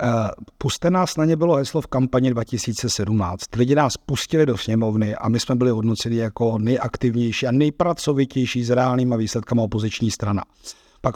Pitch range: 125-145 Hz